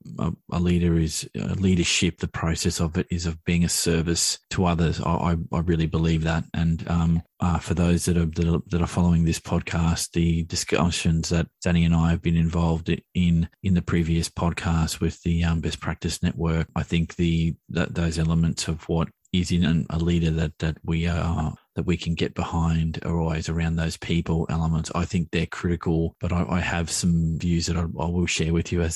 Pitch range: 85-90 Hz